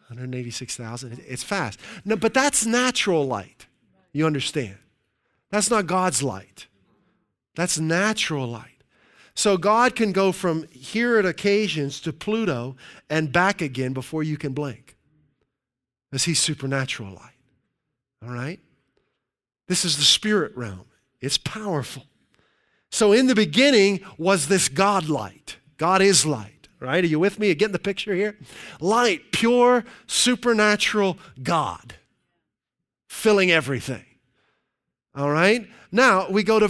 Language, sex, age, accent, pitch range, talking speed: English, male, 50-69, American, 150-230 Hz, 130 wpm